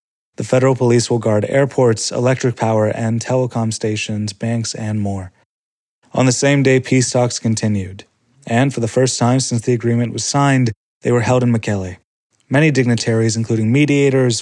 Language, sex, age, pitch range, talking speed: English, male, 20-39, 110-130 Hz, 165 wpm